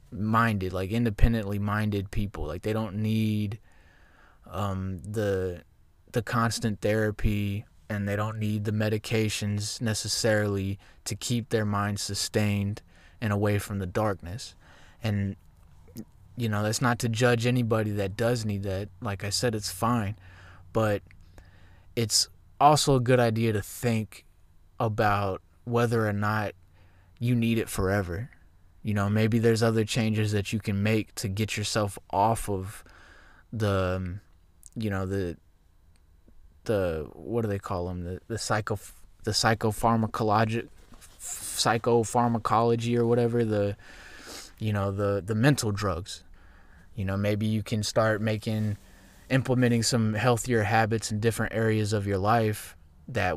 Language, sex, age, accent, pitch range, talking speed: English, male, 20-39, American, 95-110 Hz, 135 wpm